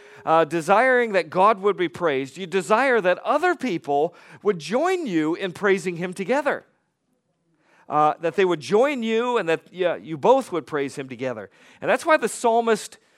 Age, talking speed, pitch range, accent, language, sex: 40-59, 175 wpm, 145-215 Hz, American, English, male